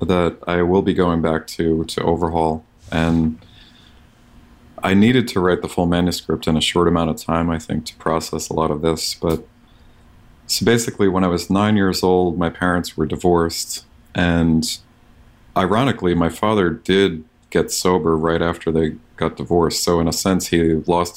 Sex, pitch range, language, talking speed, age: male, 80-95 Hz, English, 175 wpm, 40-59